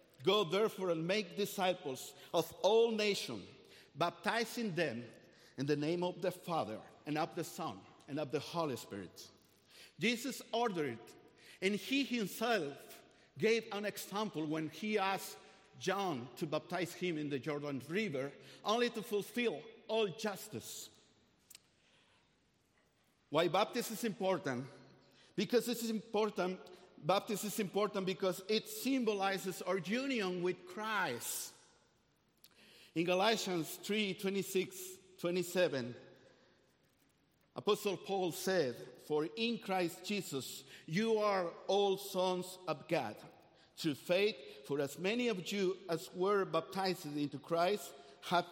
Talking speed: 120 wpm